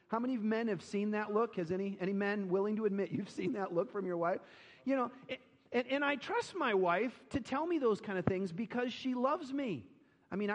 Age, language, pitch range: 40-59, English, 160-210 Hz